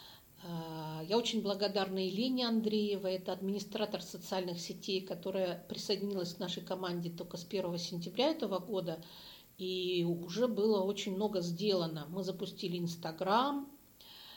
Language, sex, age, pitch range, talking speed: Russian, female, 50-69, 175-215 Hz, 120 wpm